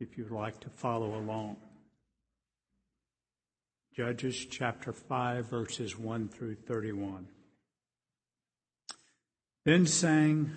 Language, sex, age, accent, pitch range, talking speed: English, male, 60-79, American, 115-140 Hz, 85 wpm